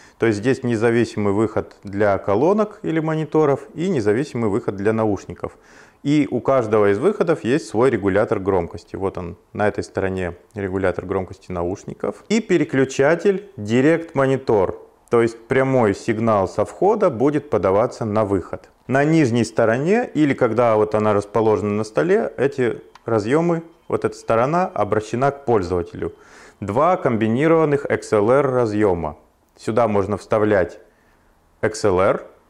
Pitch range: 105-155 Hz